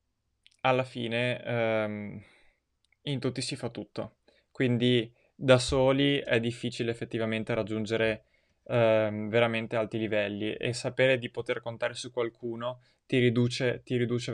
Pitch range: 115-125 Hz